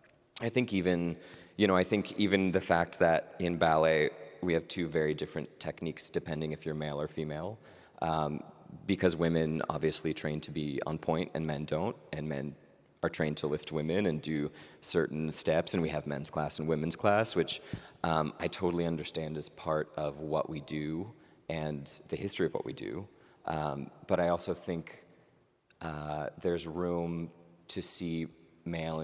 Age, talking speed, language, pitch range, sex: 30-49, 175 wpm, English, 75-90 Hz, male